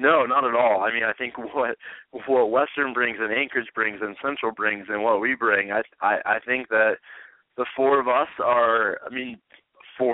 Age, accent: 20-39, American